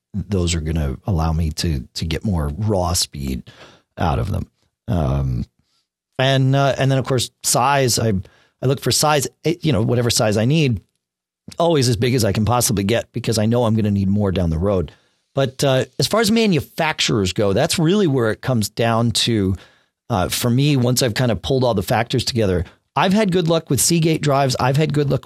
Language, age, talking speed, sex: English, 40-59, 215 wpm, male